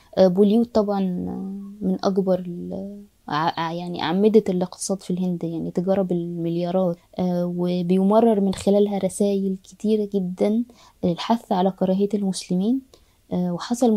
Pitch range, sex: 185-225 Hz, female